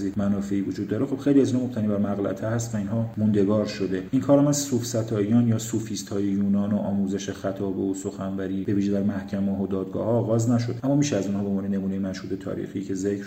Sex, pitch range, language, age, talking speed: male, 100-120 Hz, Persian, 40-59, 215 wpm